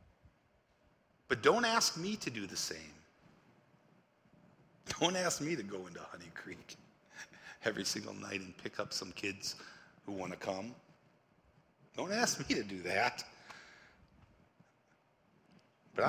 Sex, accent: male, American